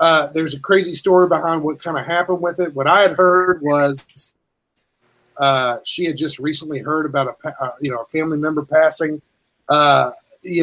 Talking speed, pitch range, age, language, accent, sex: 190 wpm, 160-215 Hz, 30-49, English, American, male